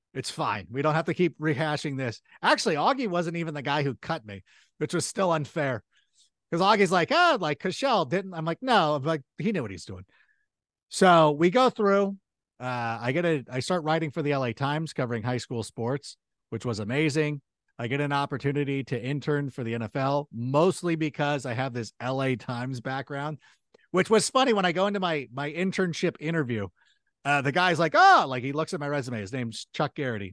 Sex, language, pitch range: male, English, 130-185 Hz